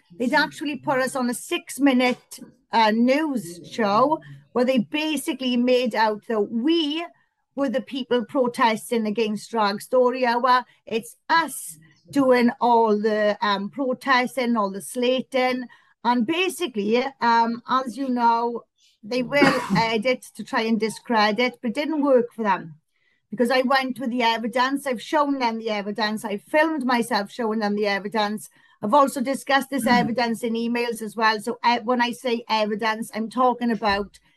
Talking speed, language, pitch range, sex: 160 wpm, English, 220-260 Hz, female